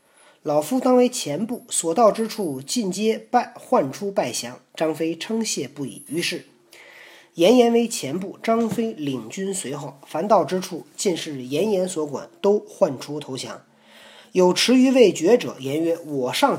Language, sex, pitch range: Chinese, male, 150-230 Hz